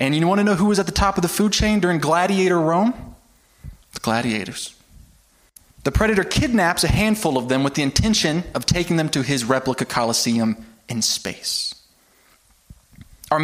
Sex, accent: male, American